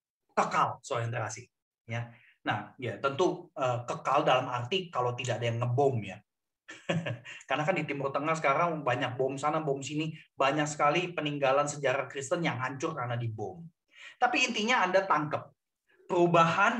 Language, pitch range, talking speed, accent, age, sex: Indonesian, 150-200 Hz, 145 wpm, native, 30-49, male